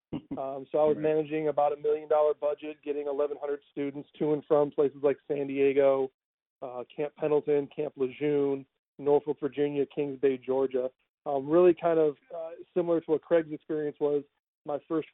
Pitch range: 140-165 Hz